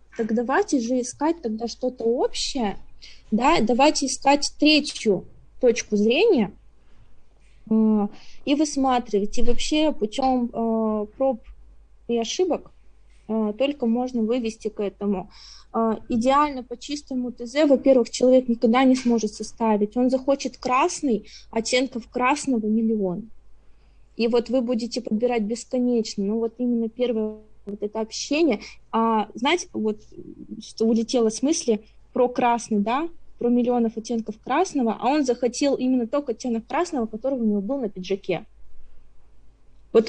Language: Russian